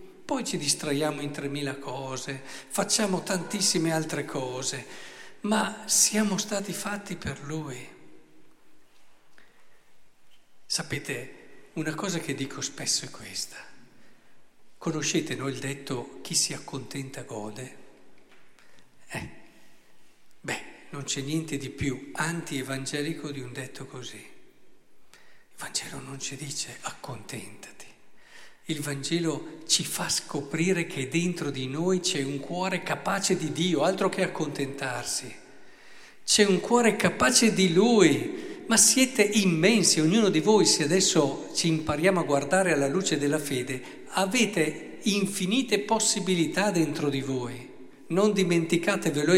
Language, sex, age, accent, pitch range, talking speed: Italian, male, 50-69, native, 140-195 Hz, 120 wpm